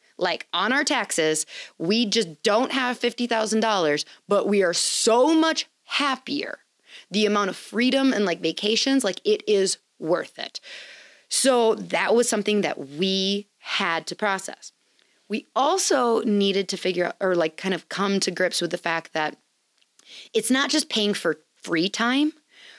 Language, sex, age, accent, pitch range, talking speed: English, female, 30-49, American, 180-240 Hz, 160 wpm